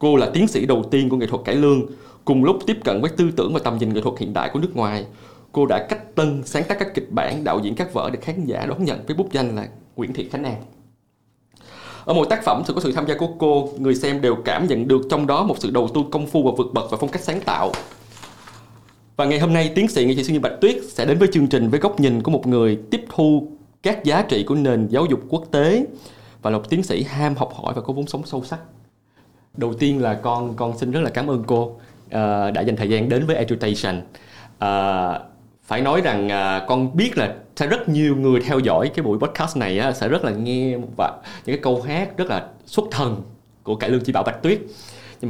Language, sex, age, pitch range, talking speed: Vietnamese, male, 20-39, 115-150 Hz, 255 wpm